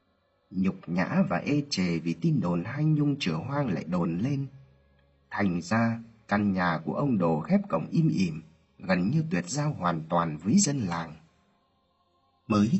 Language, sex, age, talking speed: Vietnamese, male, 30-49, 170 wpm